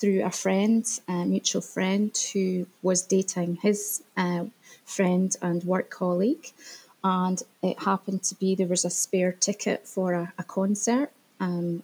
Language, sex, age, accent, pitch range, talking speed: English, female, 20-39, British, 180-210 Hz, 150 wpm